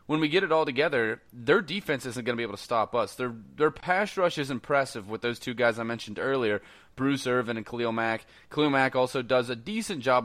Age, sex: 30-49, male